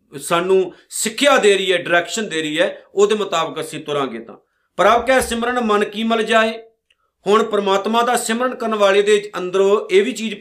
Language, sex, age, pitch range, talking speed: Punjabi, male, 50-69, 170-215 Hz, 185 wpm